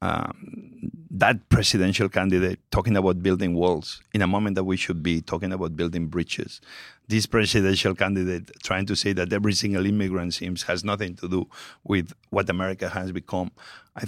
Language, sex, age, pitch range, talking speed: English, male, 50-69, 90-110 Hz, 170 wpm